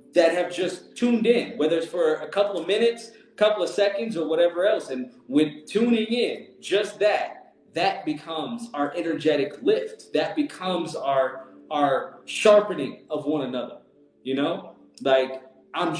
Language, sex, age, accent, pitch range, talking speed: English, male, 20-39, American, 135-225 Hz, 160 wpm